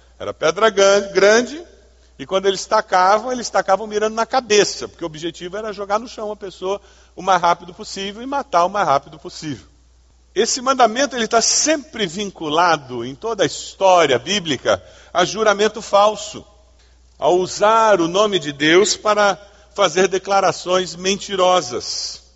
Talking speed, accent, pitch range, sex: 150 wpm, Brazilian, 145-215 Hz, male